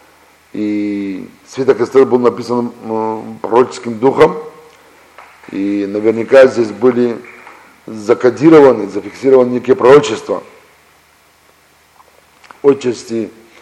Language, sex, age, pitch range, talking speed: Russian, male, 50-69, 110-140 Hz, 70 wpm